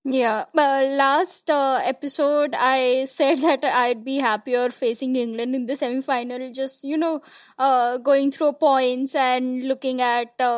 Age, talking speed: 20-39, 145 wpm